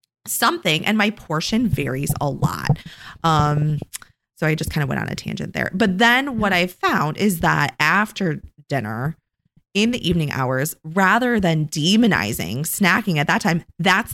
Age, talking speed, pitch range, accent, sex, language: 20-39, 165 wpm, 150-210 Hz, American, female, English